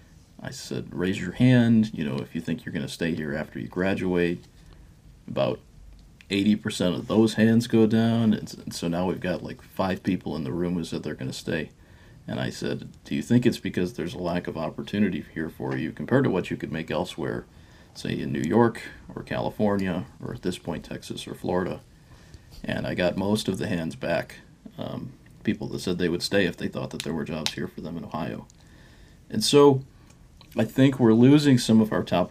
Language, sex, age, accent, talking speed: English, male, 40-59, American, 215 wpm